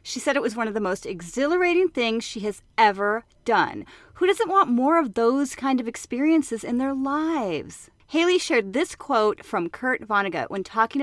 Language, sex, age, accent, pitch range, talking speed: English, female, 30-49, American, 220-285 Hz, 190 wpm